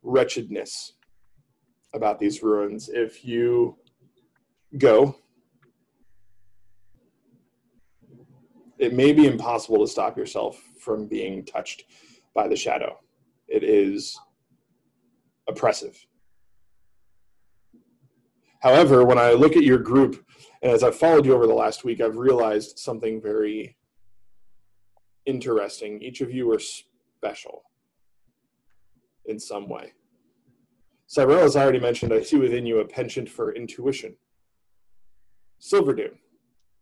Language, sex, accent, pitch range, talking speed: English, male, American, 105-150 Hz, 110 wpm